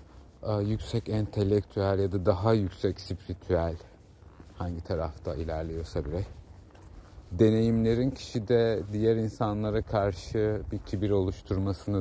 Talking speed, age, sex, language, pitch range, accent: 95 wpm, 50-69, male, Turkish, 90-105 Hz, native